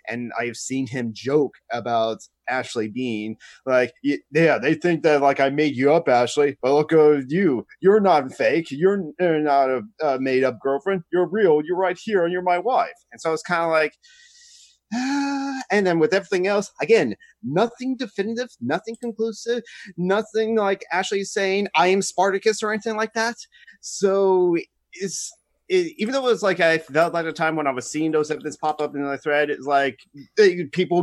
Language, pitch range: English, 150-205 Hz